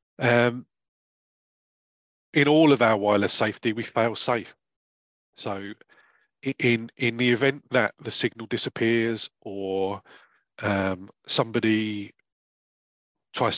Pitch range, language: 100-120 Hz, English